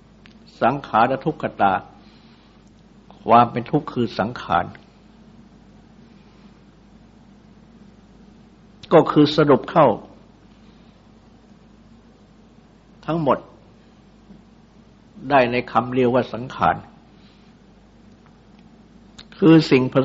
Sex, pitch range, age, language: male, 125-205 Hz, 60-79, Thai